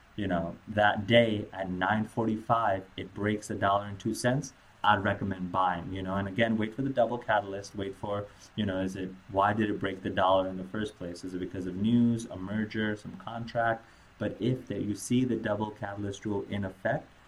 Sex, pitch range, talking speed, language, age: male, 95-110 Hz, 220 wpm, English, 20-39